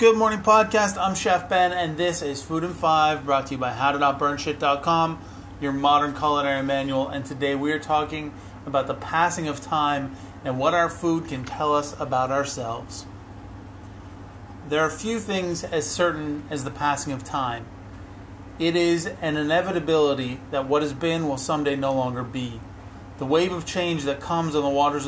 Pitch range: 125-150 Hz